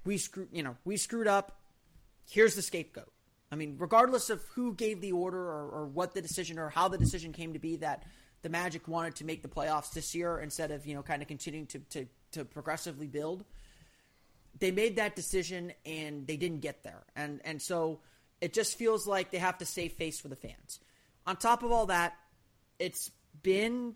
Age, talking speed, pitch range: 30-49, 210 wpm, 150-190 Hz